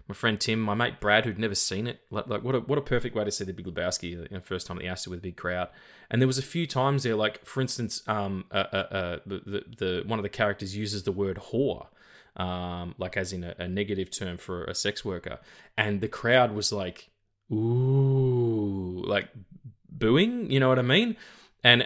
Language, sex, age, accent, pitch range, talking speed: English, male, 20-39, Australian, 95-120 Hz, 240 wpm